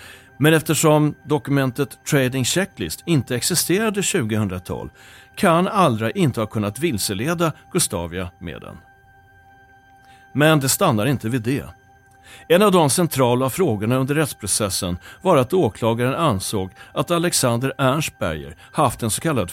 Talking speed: 125 wpm